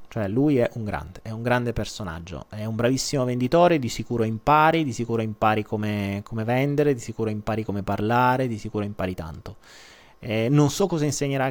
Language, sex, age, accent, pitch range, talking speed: Italian, male, 30-49, native, 110-160 Hz, 190 wpm